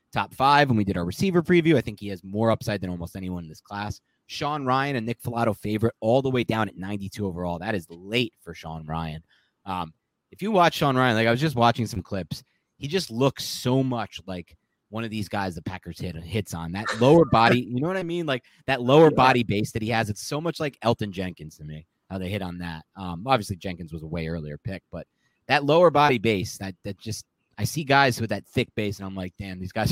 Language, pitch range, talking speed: English, 95-125 Hz, 255 wpm